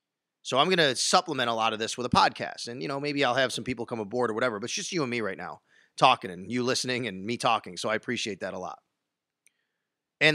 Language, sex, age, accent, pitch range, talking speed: English, male, 30-49, American, 125-160 Hz, 265 wpm